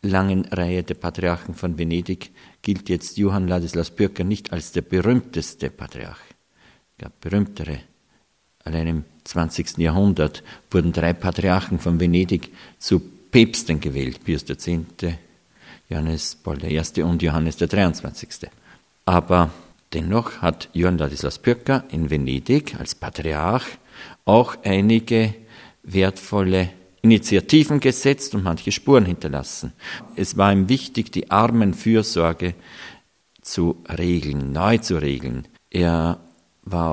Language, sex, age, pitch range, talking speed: German, male, 50-69, 80-100 Hz, 115 wpm